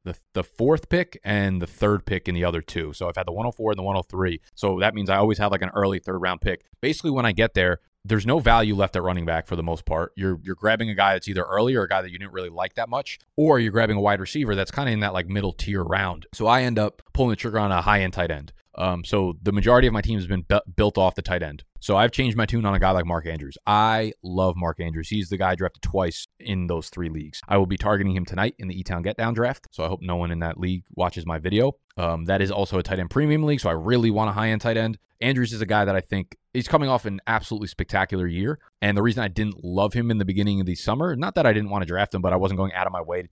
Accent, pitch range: American, 90-110 Hz